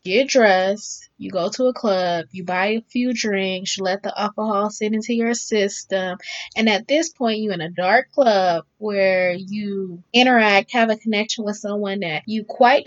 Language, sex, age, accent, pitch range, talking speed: English, female, 20-39, American, 190-240 Hz, 185 wpm